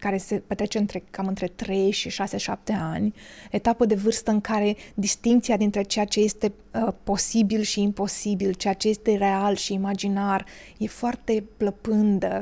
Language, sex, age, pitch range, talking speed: Romanian, female, 20-39, 200-240 Hz, 160 wpm